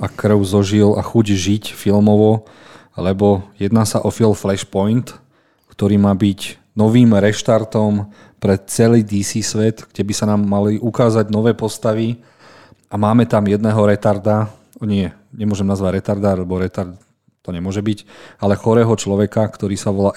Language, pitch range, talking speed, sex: Slovak, 100-110 Hz, 150 wpm, male